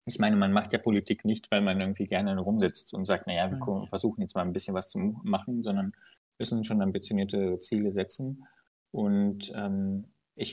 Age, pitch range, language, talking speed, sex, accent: 20-39, 105-125 Hz, German, 190 wpm, male, German